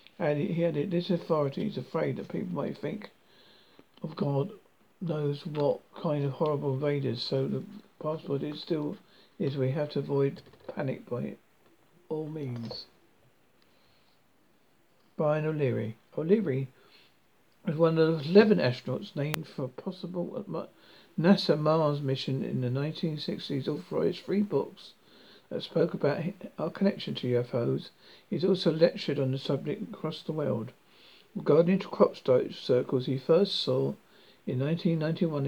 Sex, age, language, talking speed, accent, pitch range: male, 60-79, English, 135 wpm, British, 135-175 Hz